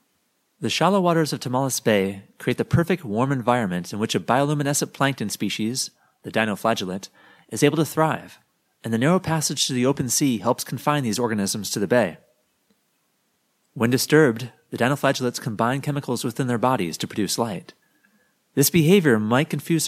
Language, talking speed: English, 165 wpm